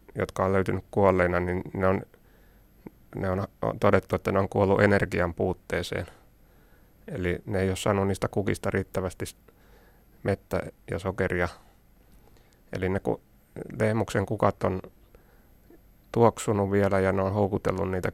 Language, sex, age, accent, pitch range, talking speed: Finnish, male, 30-49, native, 90-100 Hz, 130 wpm